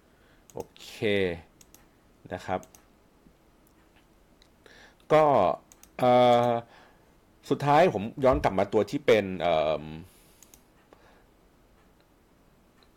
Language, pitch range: Thai, 100-140 Hz